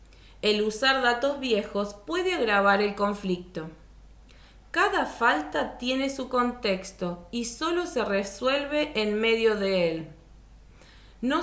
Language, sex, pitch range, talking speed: Spanish, female, 185-250 Hz, 115 wpm